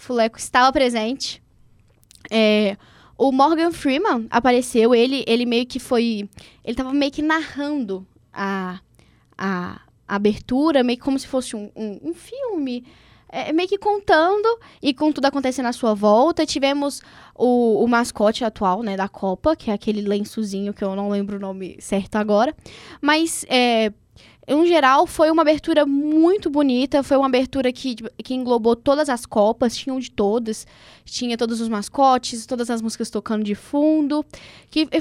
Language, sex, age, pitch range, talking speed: Portuguese, female, 10-29, 220-305 Hz, 165 wpm